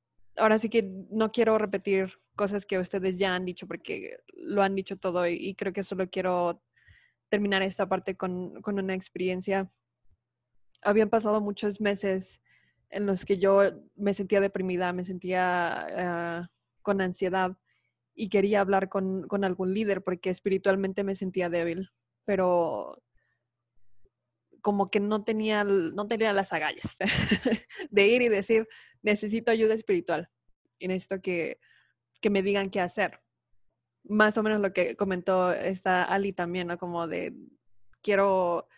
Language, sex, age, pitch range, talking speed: Spanish, female, 20-39, 180-205 Hz, 145 wpm